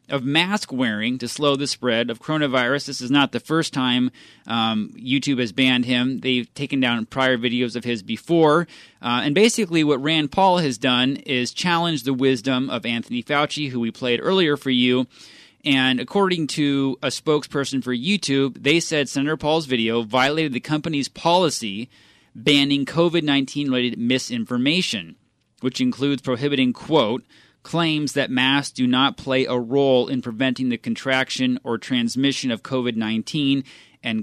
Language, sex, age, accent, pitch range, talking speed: English, male, 30-49, American, 125-145 Hz, 155 wpm